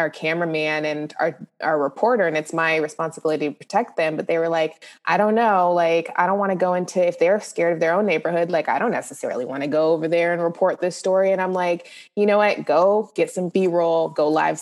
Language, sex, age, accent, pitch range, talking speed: English, female, 20-39, American, 160-185 Hz, 240 wpm